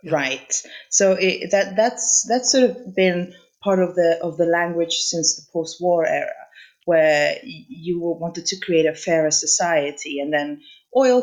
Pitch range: 165-220 Hz